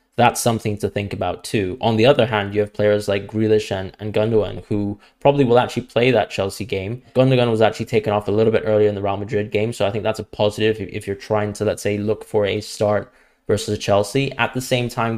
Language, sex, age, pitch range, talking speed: English, male, 10-29, 100-115 Hz, 250 wpm